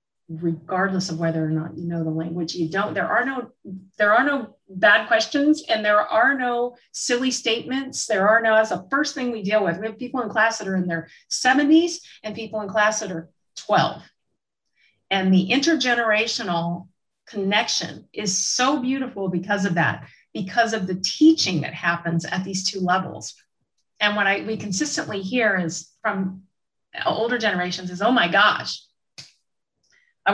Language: English